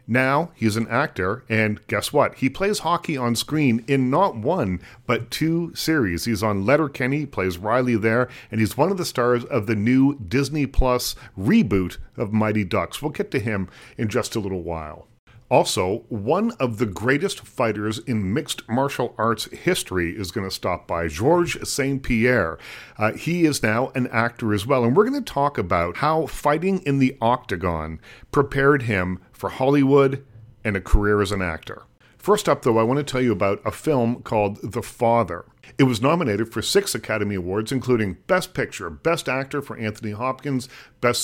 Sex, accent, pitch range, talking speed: male, American, 105-135 Hz, 180 wpm